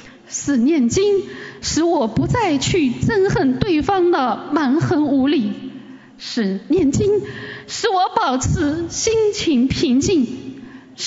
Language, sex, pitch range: Chinese, female, 265-380 Hz